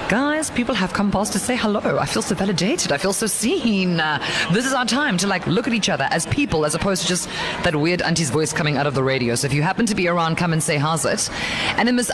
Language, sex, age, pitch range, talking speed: English, female, 20-39, 160-220 Hz, 280 wpm